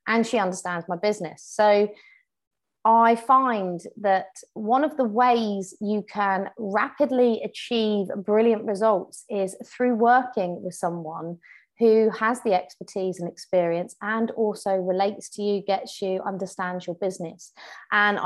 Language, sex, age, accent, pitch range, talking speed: English, female, 30-49, British, 185-230 Hz, 135 wpm